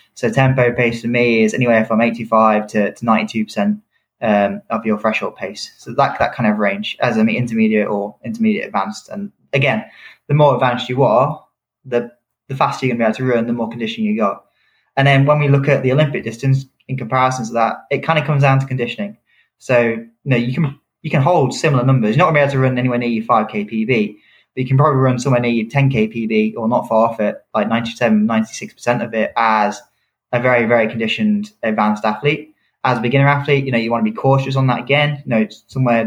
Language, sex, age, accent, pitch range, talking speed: English, male, 20-39, British, 110-135 Hz, 230 wpm